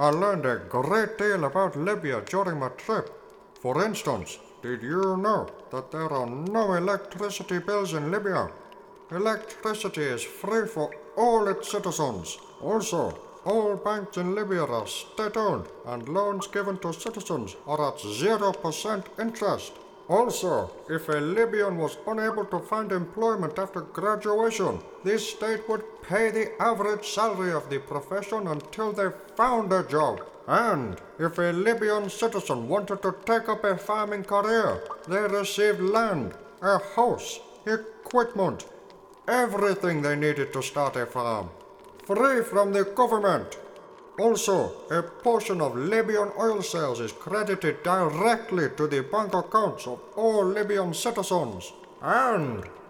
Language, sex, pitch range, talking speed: English, male, 175-220 Hz, 135 wpm